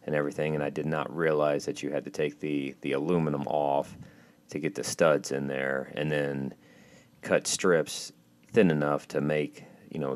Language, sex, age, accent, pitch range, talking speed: English, male, 40-59, American, 70-80 Hz, 190 wpm